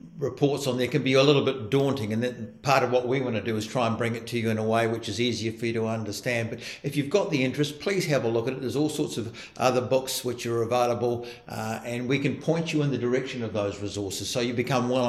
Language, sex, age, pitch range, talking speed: English, male, 60-79, 115-135 Hz, 285 wpm